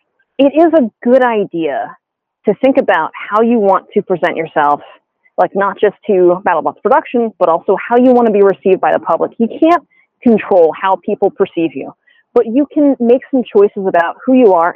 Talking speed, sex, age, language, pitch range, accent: 200 wpm, female, 30-49, English, 180-245 Hz, American